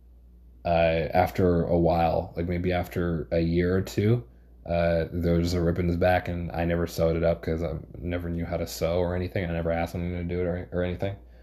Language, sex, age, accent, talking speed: English, male, 20-39, American, 230 wpm